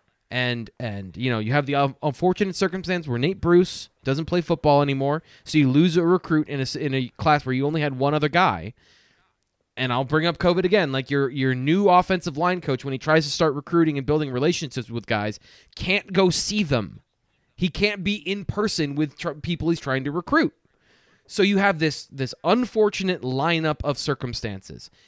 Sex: male